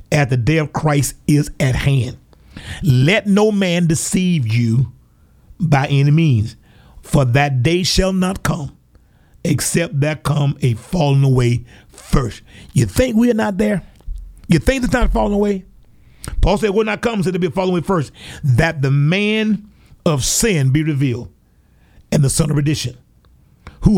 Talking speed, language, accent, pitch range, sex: 165 wpm, English, American, 125-190 Hz, male